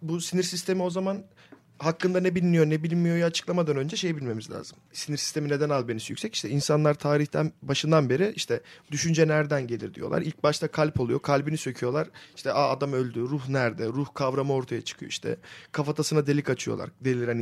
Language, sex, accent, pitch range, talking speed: Turkish, male, native, 145-180 Hz, 175 wpm